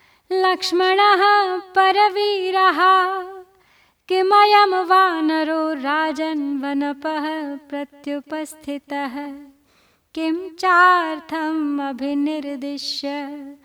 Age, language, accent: 20-39, Hindi, native